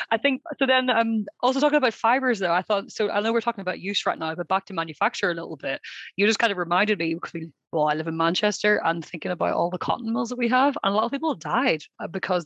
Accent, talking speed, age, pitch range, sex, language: Irish, 270 wpm, 20-39, 170-220 Hz, female, English